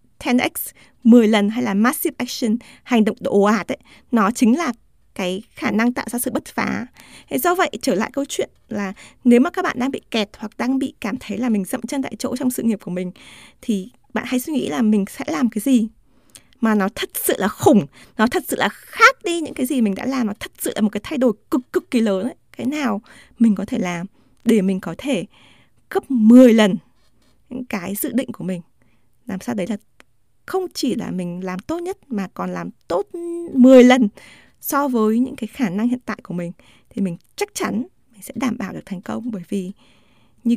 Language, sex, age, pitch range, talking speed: Vietnamese, female, 20-39, 210-260 Hz, 230 wpm